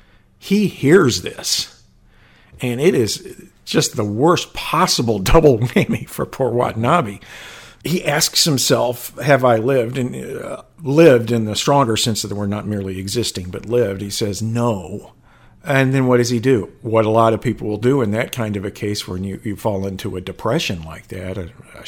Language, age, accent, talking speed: English, 50-69, American, 190 wpm